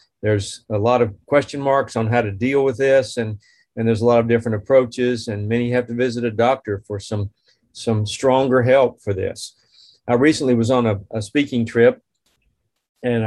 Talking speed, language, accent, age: 195 wpm, English, American, 40-59